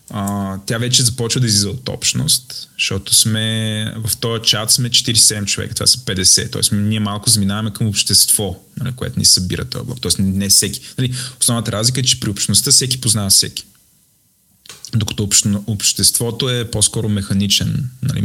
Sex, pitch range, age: male, 100-125 Hz, 20-39